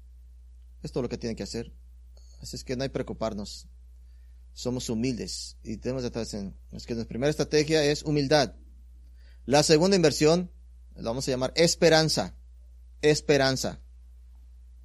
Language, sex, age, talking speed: English, male, 30-49, 150 wpm